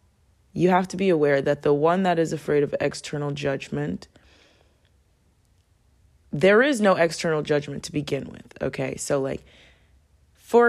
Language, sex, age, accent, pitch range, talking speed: English, female, 20-39, American, 140-160 Hz, 145 wpm